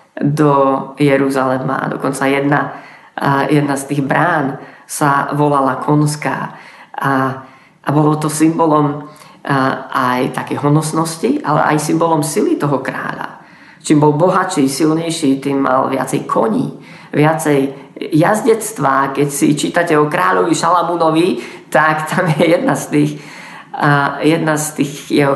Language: Slovak